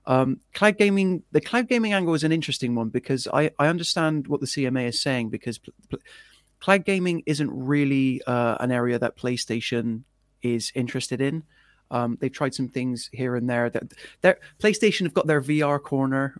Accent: British